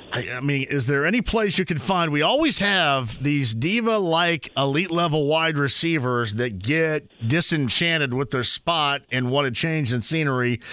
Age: 40-59